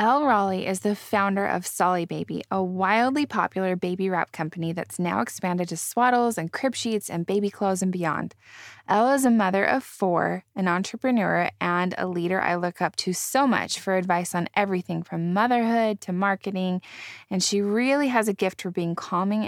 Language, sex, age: English, female, 20-39